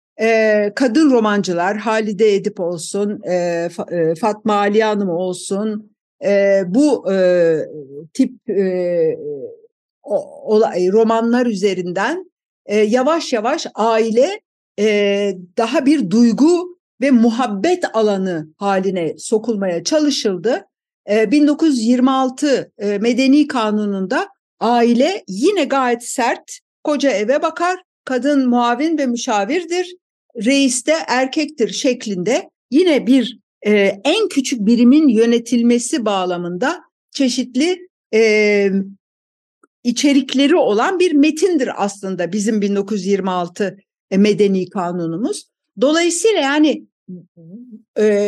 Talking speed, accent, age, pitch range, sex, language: 80 wpm, native, 60-79, 200-285 Hz, female, Turkish